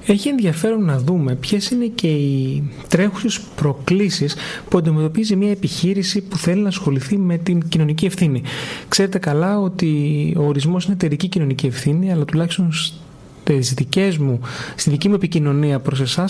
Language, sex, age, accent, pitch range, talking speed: Greek, male, 30-49, native, 150-195 Hz, 145 wpm